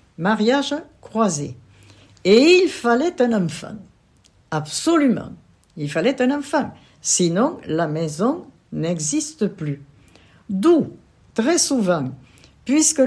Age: 60-79